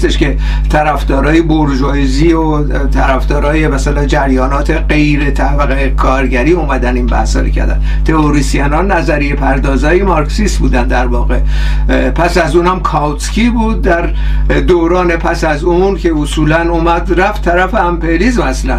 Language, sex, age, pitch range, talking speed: Persian, male, 60-79, 150-190 Hz, 120 wpm